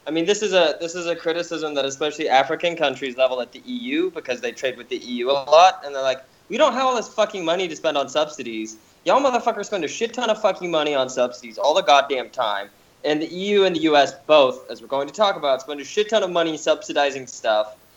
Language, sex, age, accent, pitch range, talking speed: English, male, 20-39, American, 135-190 Hz, 250 wpm